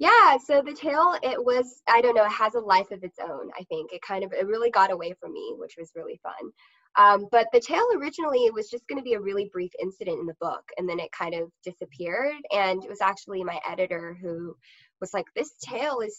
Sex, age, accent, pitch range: female, 10-29, American, 185-250 Hz